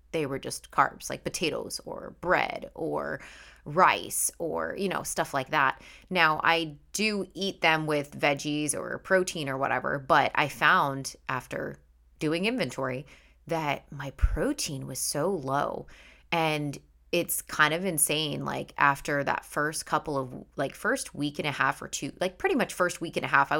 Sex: female